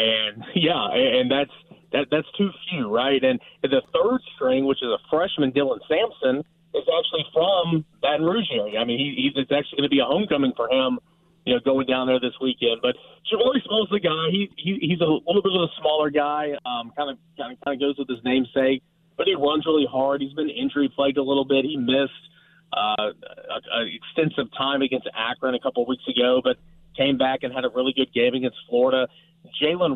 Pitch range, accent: 130-165 Hz, American